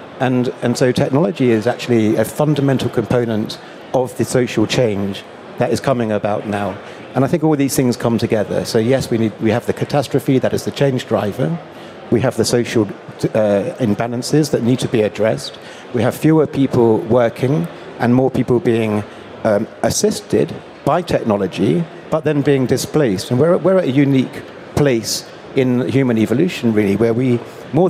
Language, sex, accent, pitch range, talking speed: English, male, British, 110-130 Hz, 175 wpm